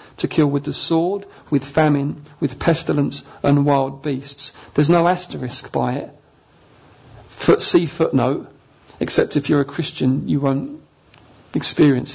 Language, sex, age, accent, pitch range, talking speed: English, male, 40-59, British, 135-155 Hz, 135 wpm